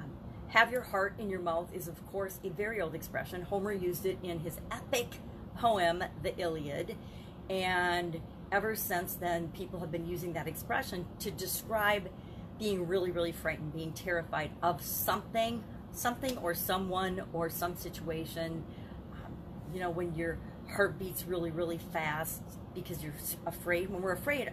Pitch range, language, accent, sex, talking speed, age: 165-205 Hz, English, American, female, 155 wpm, 40-59